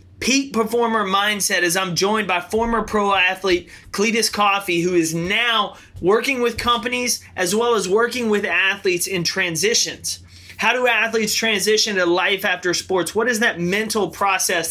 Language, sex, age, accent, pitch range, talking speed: English, male, 30-49, American, 170-215 Hz, 160 wpm